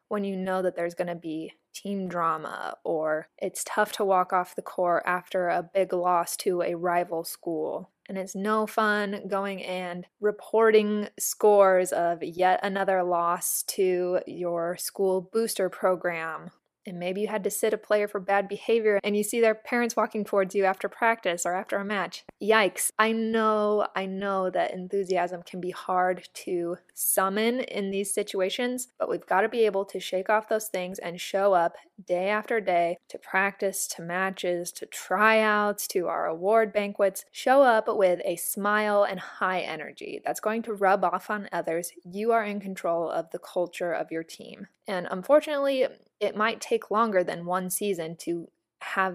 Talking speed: 180 wpm